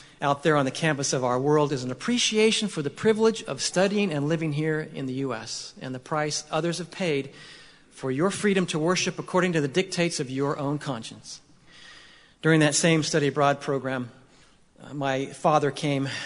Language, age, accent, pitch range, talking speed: English, 40-59, American, 135-165 Hz, 185 wpm